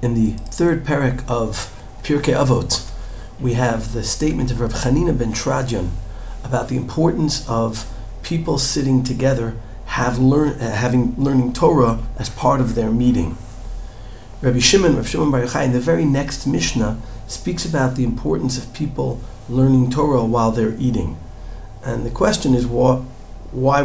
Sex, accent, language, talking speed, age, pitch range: male, American, English, 155 wpm, 50-69, 110-130 Hz